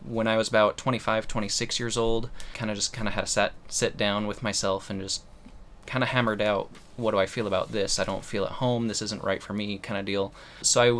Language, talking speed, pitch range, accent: English, 255 wpm, 100-115 Hz, American